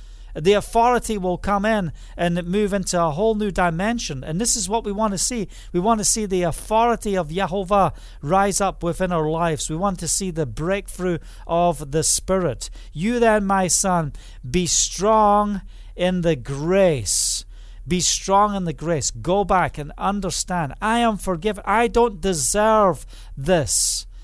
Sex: male